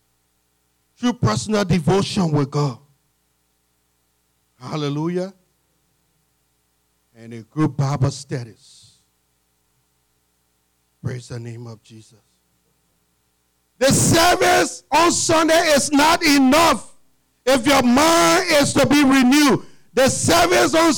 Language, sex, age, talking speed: English, male, 50-69, 95 wpm